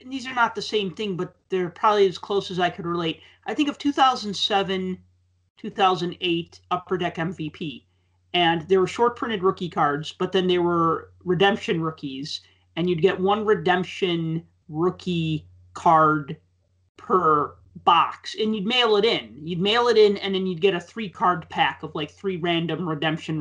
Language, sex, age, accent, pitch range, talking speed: English, male, 30-49, American, 155-195 Hz, 170 wpm